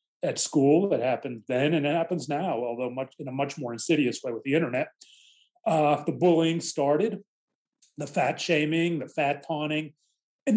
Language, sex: English, male